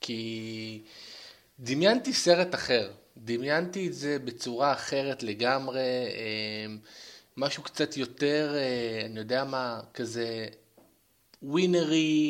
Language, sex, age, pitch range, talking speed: Hebrew, male, 20-39, 120-160 Hz, 90 wpm